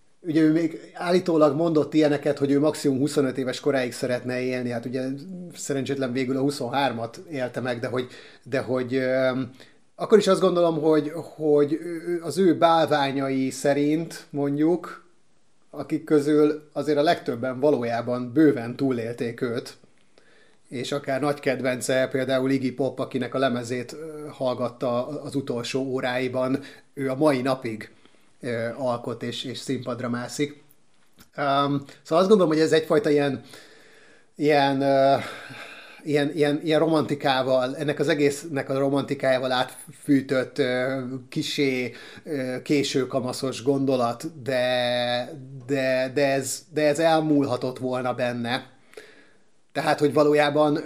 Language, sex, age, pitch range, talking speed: Hungarian, male, 30-49, 130-150 Hz, 125 wpm